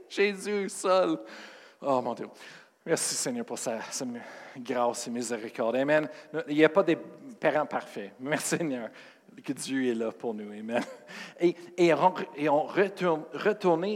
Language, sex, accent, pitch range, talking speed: French, male, Canadian, 150-215 Hz, 160 wpm